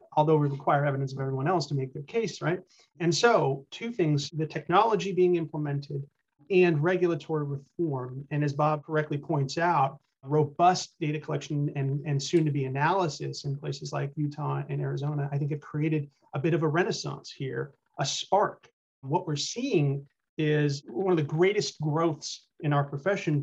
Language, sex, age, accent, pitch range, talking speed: English, male, 30-49, American, 140-170 Hz, 175 wpm